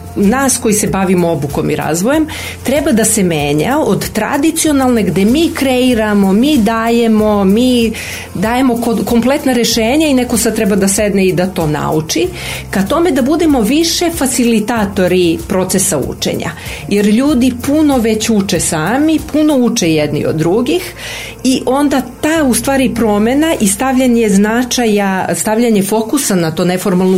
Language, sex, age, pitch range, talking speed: Croatian, female, 40-59, 195-250 Hz, 145 wpm